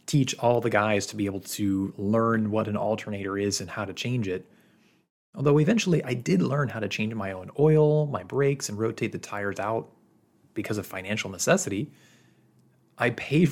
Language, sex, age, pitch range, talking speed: English, male, 30-49, 105-145 Hz, 185 wpm